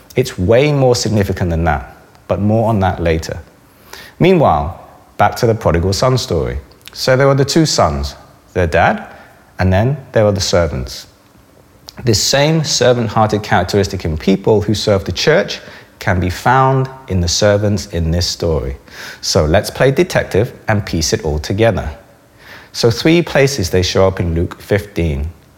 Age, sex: 30-49, male